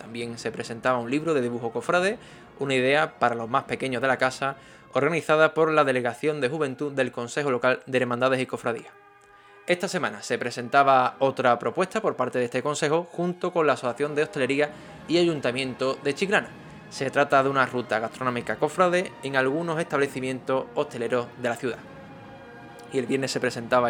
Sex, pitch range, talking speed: male, 120-150 Hz, 175 wpm